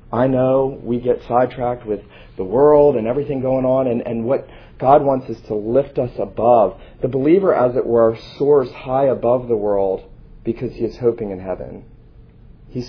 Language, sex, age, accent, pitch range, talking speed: English, male, 40-59, American, 120-175 Hz, 180 wpm